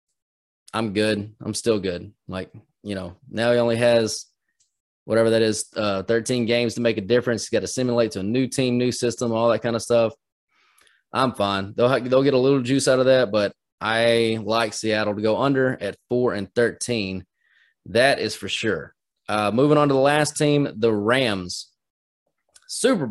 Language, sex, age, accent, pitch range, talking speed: English, male, 20-39, American, 110-150 Hz, 190 wpm